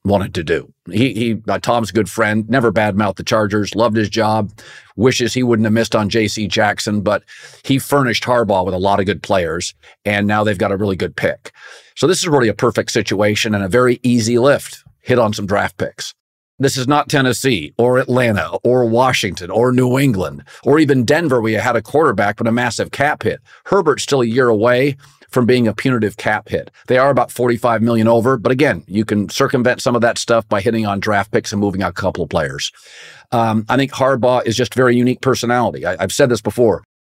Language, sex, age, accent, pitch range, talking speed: English, male, 40-59, American, 105-125 Hz, 220 wpm